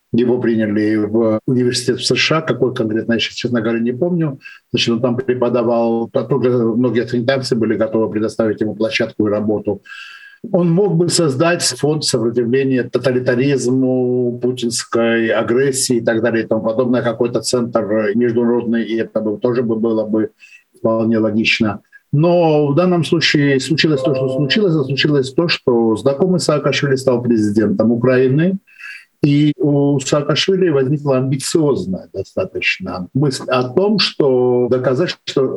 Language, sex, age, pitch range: Russian, male, 50-69, 115-145 Hz